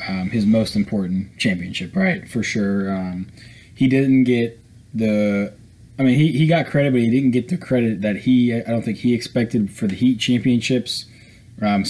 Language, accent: English, American